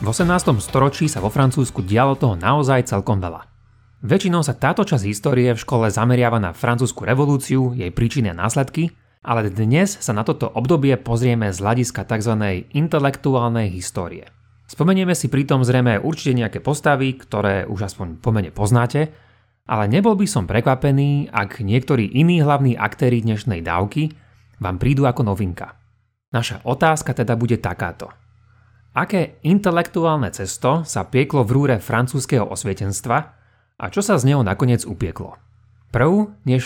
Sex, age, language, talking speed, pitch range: male, 30-49, Slovak, 145 wpm, 105-140 Hz